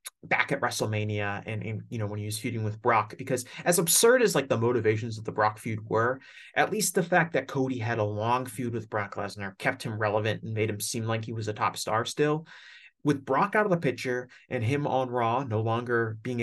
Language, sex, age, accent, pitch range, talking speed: English, male, 30-49, American, 110-140 Hz, 240 wpm